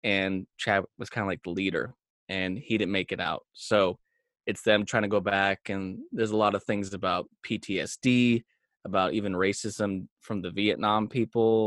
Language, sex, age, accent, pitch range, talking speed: English, male, 20-39, American, 100-135 Hz, 185 wpm